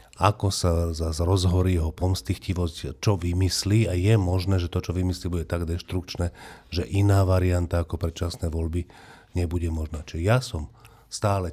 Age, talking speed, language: 40-59, 155 wpm, Slovak